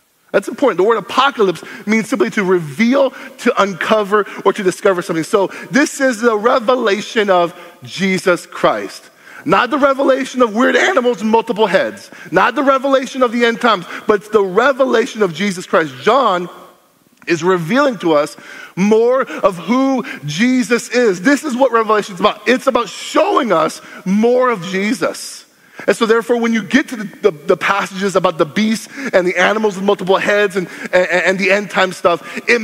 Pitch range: 185-245 Hz